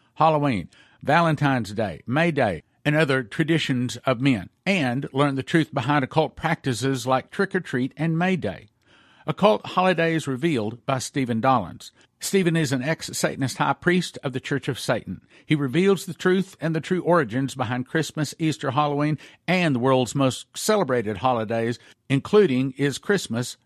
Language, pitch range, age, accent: English, 125-160 Hz, 50-69, American